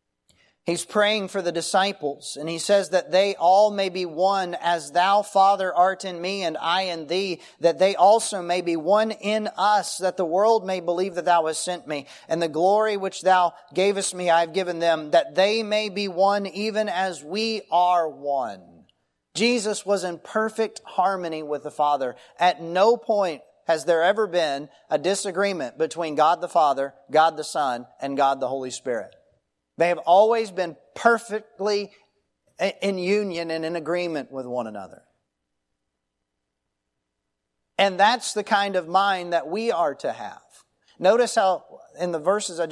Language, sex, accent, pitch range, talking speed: English, male, American, 160-200 Hz, 170 wpm